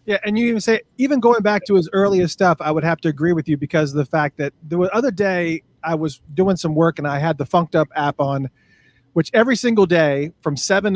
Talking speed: 250 wpm